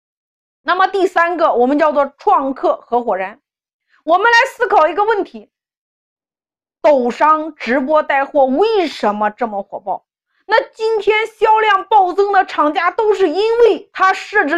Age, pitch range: 30-49, 275-410 Hz